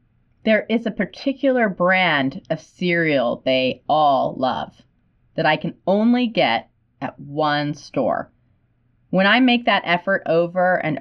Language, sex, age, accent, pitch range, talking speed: English, female, 30-49, American, 145-190 Hz, 135 wpm